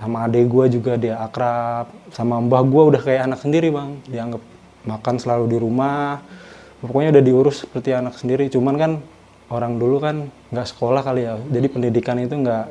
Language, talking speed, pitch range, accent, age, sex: Indonesian, 180 wpm, 115-145 Hz, native, 20-39, male